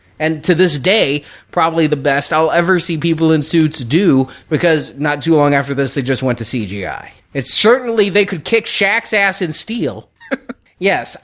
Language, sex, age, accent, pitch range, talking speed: English, male, 30-49, American, 135-175 Hz, 185 wpm